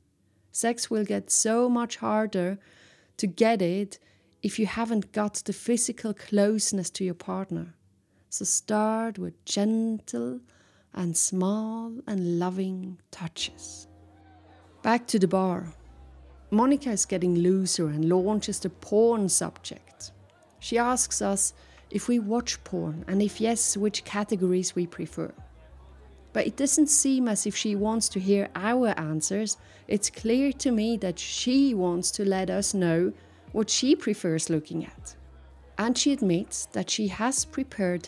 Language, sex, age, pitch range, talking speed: English, female, 30-49, 160-220 Hz, 140 wpm